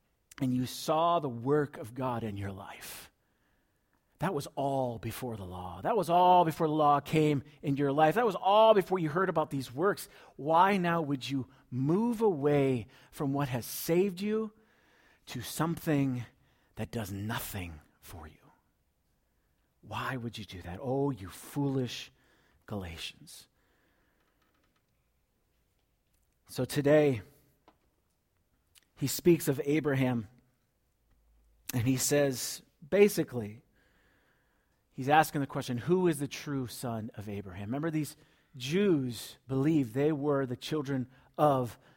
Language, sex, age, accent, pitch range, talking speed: English, male, 40-59, American, 120-155 Hz, 130 wpm